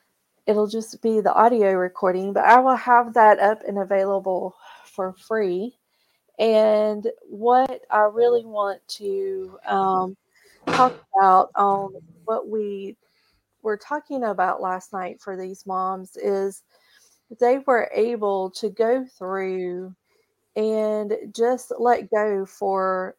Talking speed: 125 wpm